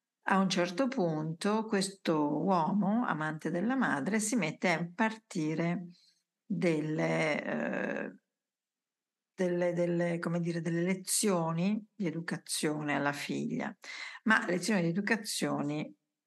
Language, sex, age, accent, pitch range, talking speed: Italian, female, 50-69, native, 165-220 Hz, 90 wpm